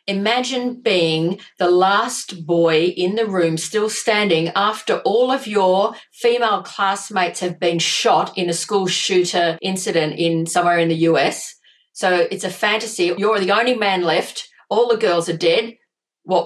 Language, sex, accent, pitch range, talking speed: English, female, Australian, 175-220 Hz, 160 wpm